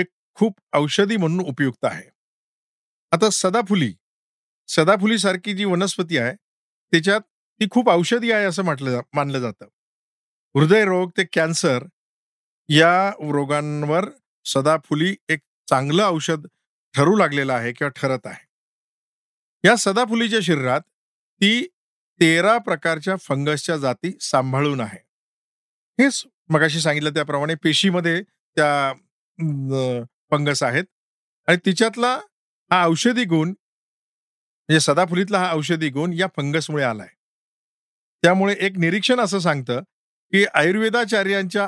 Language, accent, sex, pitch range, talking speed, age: Marathi, native, male, 145-195 Hz, 85 wpm, 50-69